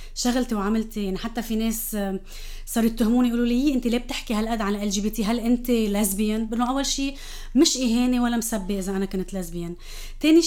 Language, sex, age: Arabic, female, 20-39